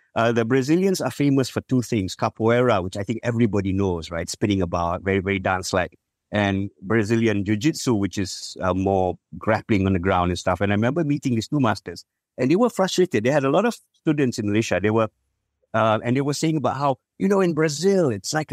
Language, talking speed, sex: English, 215 wpm, male